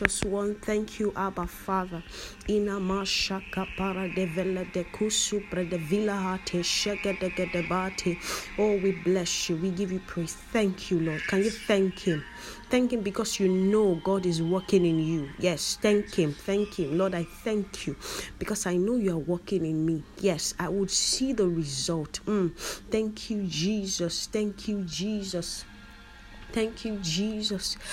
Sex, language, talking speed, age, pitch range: female, English, 140 wpm, 30-49, 180-215 Hz